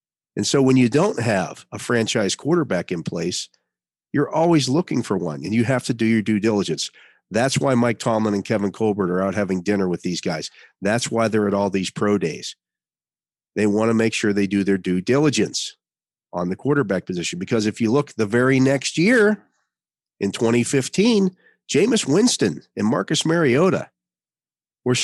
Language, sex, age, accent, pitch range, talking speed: English, male, 40-59, American, 100-130 Hz, 180 wpm